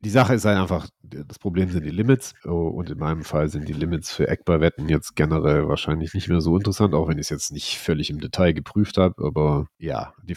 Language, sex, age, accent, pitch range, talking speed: English, male, 40-59, German, 80-100 Hz, 235 wpm